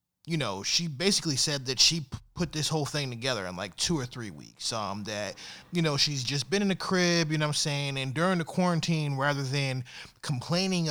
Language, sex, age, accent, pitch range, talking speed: English, male, 20-39, American, 125-155 Hz, 225 wpm